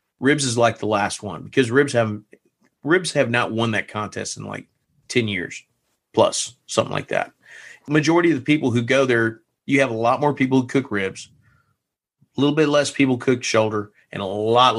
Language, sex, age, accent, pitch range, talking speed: English, male, 40-59, American, 110-140 Hz, 205 wpm